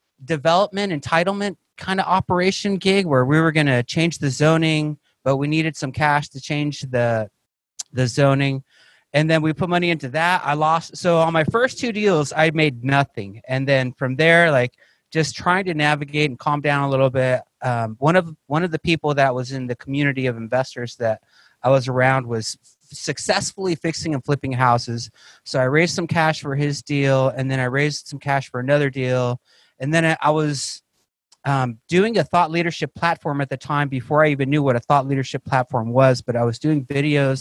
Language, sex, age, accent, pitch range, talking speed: English, male, 30-49, American, 130-160 Hz, 200 wpm